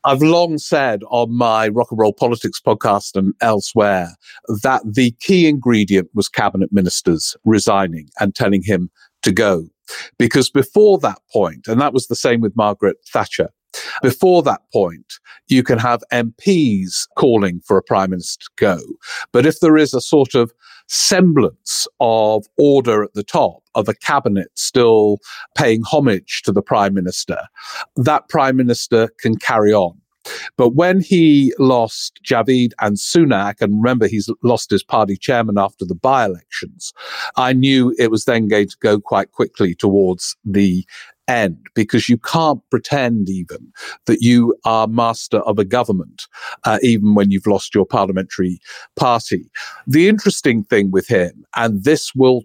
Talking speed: 160 wpm